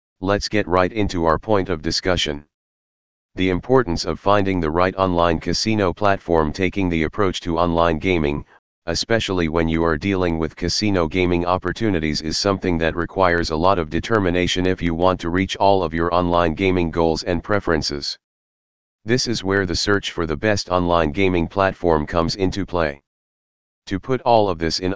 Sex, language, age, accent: male, English, 40-59, American